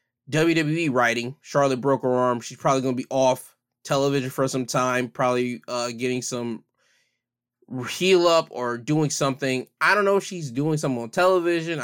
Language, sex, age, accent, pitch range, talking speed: English, male, 20-39, American, 125-155 Hz, 170 wpm